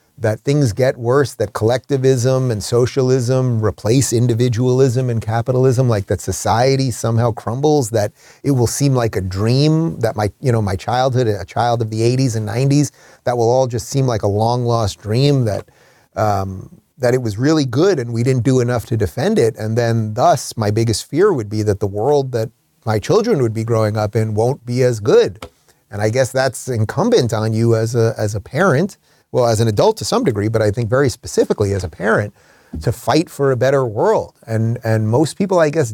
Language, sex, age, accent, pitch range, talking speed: English, male, 30-49, American, 110-140 Hz, 205 wpm